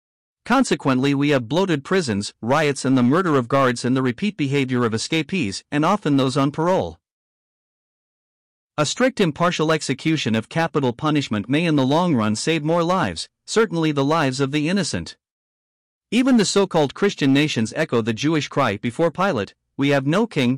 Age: 50-69